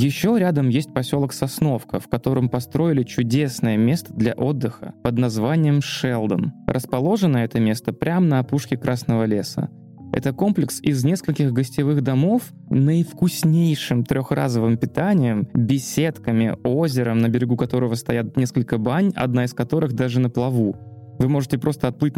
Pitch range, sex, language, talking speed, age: 120-145 Hz, male, Russian, 135 wpm, 20-39